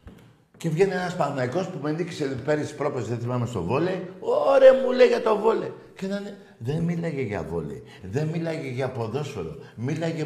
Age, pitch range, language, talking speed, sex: 60-79, 115-165 Hz, Greek, 195 wpm, male